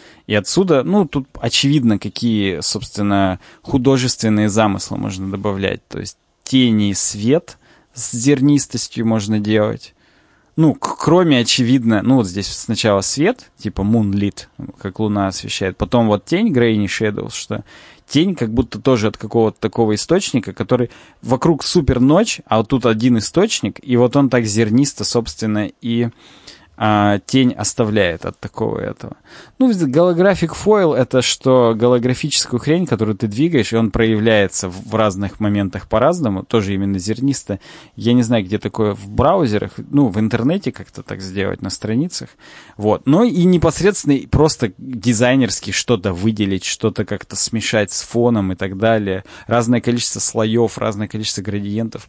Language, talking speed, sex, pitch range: Russian, 140 wpm, male, 105-130 Hz